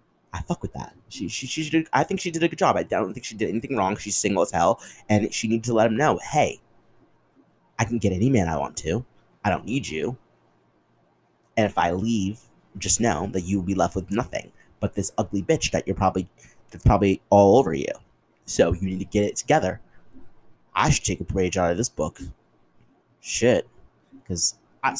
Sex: male